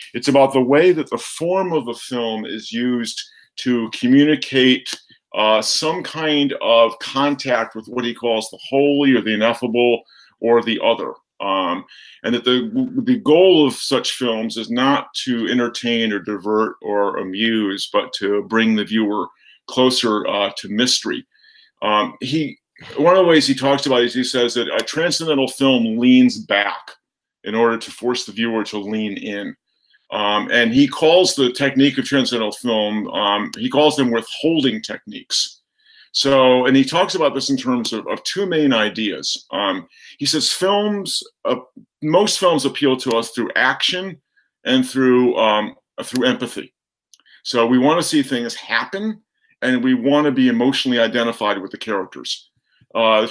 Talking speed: 165 wpm